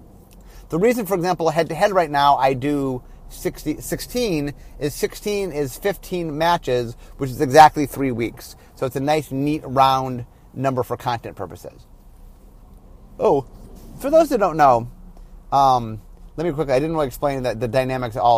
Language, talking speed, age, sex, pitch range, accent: English, 165 wpm, 30-49, male, 130-180 Hz, American